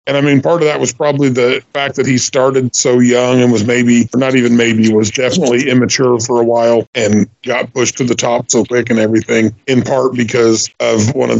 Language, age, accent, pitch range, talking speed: English, 40-59, American, 115-135 Hz, 230 wpm